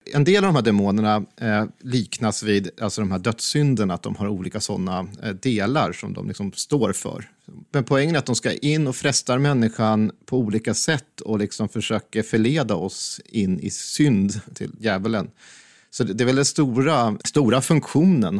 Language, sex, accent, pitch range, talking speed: Swedish, male, native, 100-120 Hz, 175 wpm